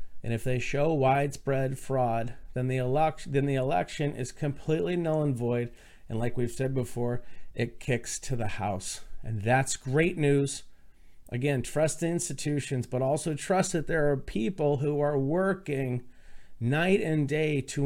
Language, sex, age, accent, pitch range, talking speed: English, male, 40-59, American, 125-155 Hz, 160 wpm